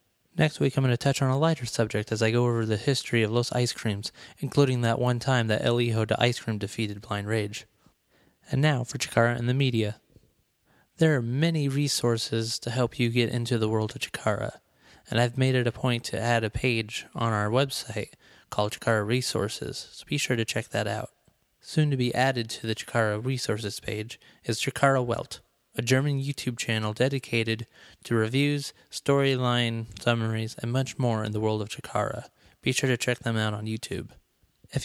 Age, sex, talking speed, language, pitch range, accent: 30-49, male, 195 wpm, English, 110-130 Hz, American